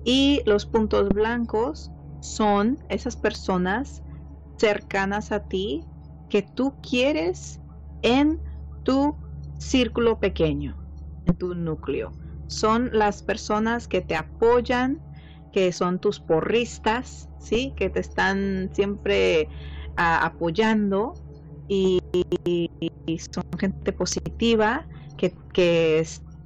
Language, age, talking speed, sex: Spanish, 30-49, 100 wpm, female